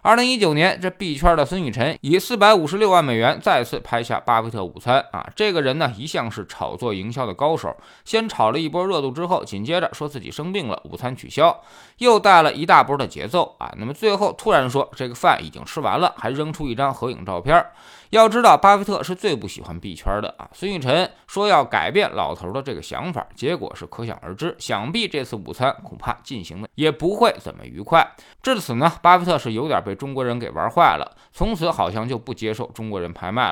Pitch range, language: 120-195 Hz, Chinese